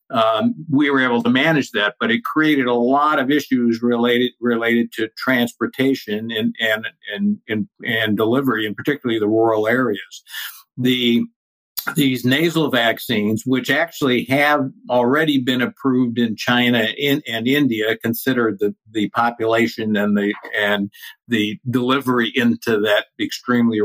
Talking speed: 140 wpm